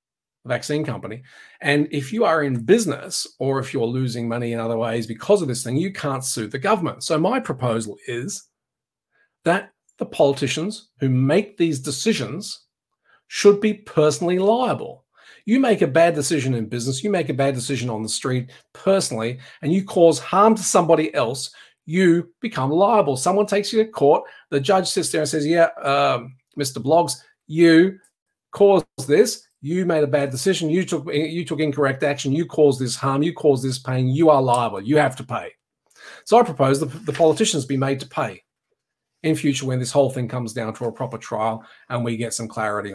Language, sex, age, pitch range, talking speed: English, male, 40-59, 130-170 Hz, 190 wpm